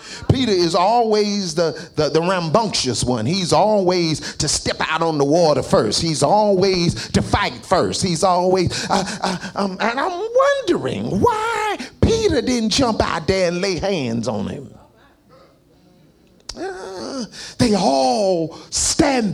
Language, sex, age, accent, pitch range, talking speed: English, male, 40-59, American, 160-245 Hz, 140 wpm